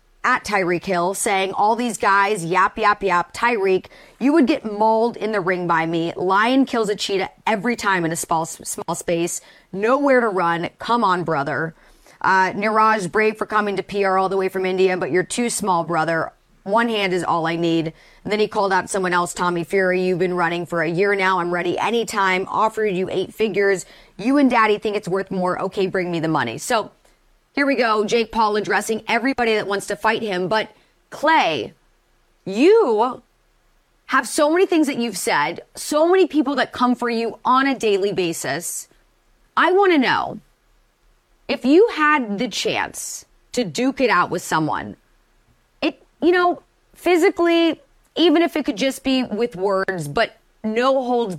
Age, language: 30-49, English